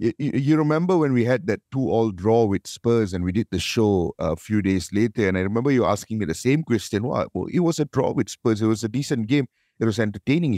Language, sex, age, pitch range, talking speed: English, male, 50-69, 105-135 Hz, 245 wpm